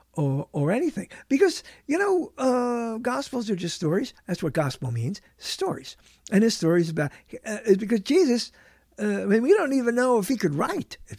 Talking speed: 195 wpm